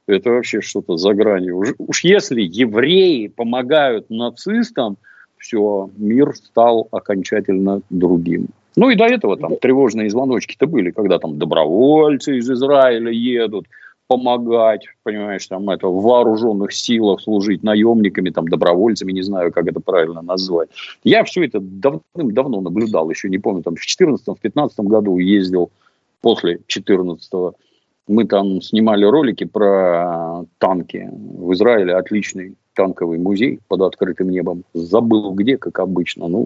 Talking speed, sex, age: 135 wpm, male, 50-69